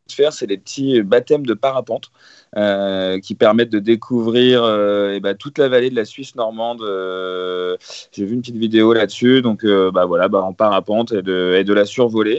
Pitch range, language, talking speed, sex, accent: 110-135 Hz, French, 205 wpm, male, French